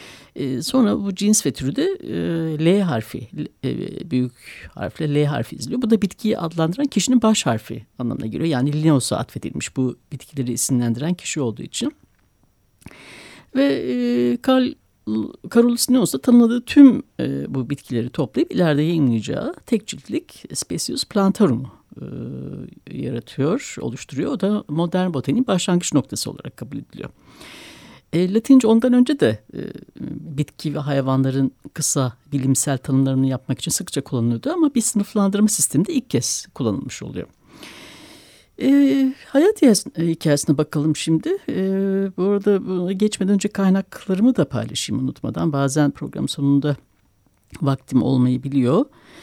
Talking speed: 120 wpm